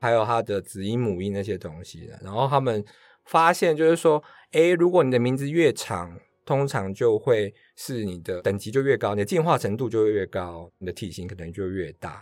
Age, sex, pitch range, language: 20-39, male, 100-140 Hz, Chinese